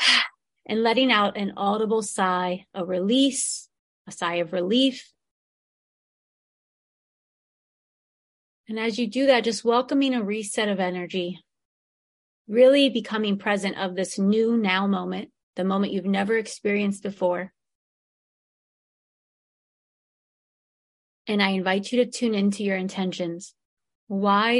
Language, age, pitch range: English, 30-49, 185-225 Hz